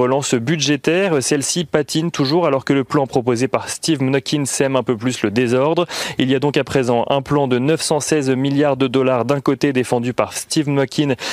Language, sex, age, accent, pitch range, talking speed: French, male, 30-49, French, 120-150 Hz, 200 wpm